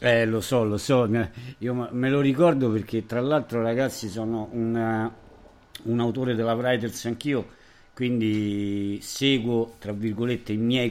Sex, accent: male, native